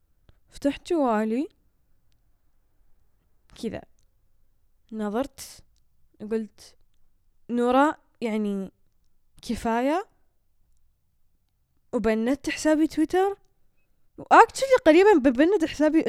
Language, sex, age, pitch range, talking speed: Arabic, female, 10-29, 220-290 Hz, 55 wpm